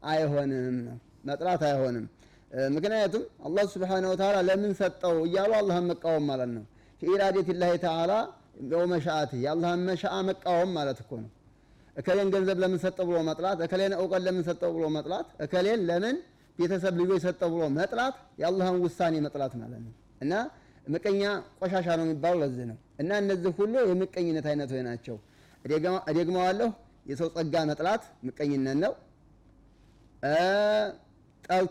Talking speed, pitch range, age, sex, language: 100 wpm, 150-190 Hz, 30-49, male, Amharic